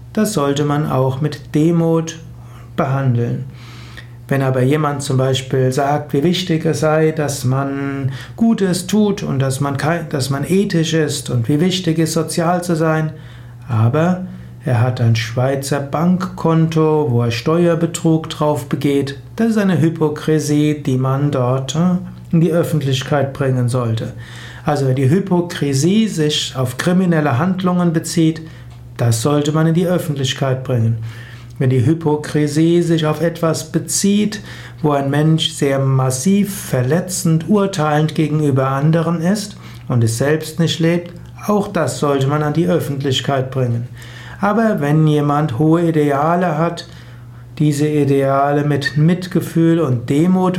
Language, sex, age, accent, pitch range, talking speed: German, male, 60-79, German, 130-165 Hz, 140 wpm